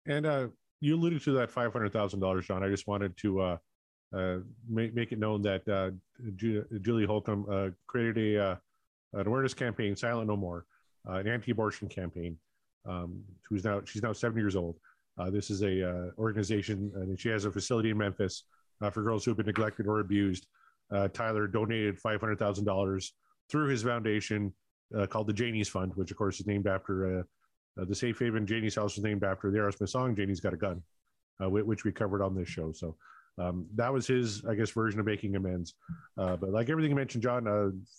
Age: 30-49